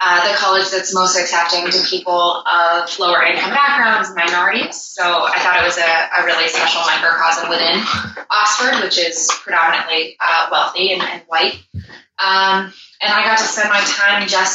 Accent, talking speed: American, 175 wpm